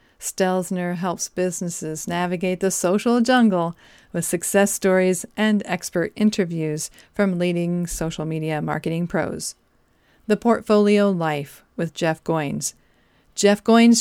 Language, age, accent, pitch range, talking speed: English, 40-59, American, 175-215 Hz, 115 wpm